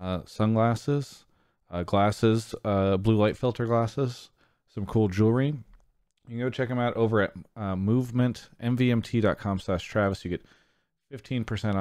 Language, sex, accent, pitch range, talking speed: English, male, American, 90-110 Hz, 140 wpm